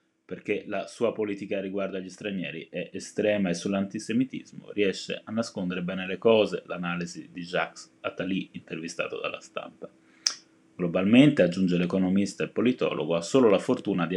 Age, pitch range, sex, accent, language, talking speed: 20-39, 90-110 Hz, male, native, Italian, 150 wpm